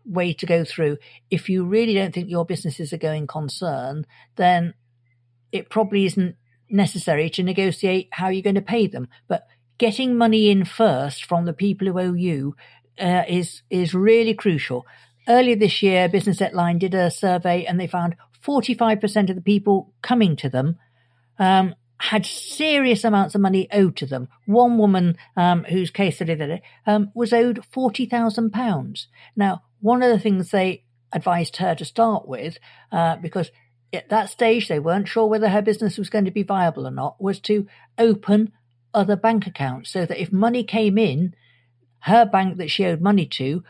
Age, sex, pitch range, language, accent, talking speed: 50-69, female, 165-210 Hz, English, British, 175 wpm